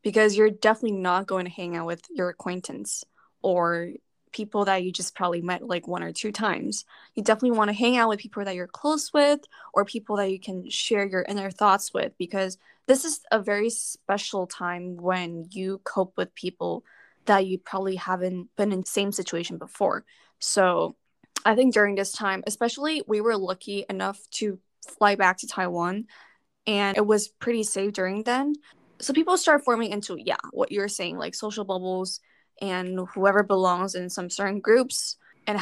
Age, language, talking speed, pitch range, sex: 10-29, English, 185 wpm, 185-215 Hz, female